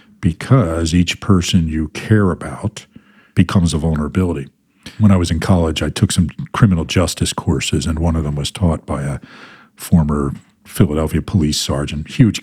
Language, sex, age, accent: English, male, 50-69, American